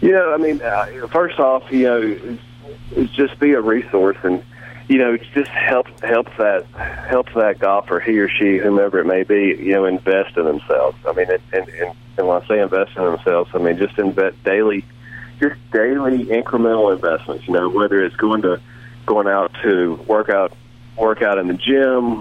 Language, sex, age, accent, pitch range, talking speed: English, male, 40-59, American, 100-120 Hz, 205 wpm